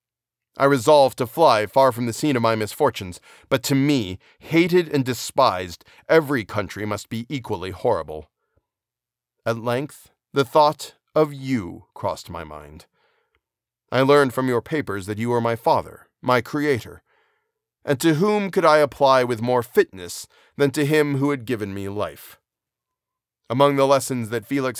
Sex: male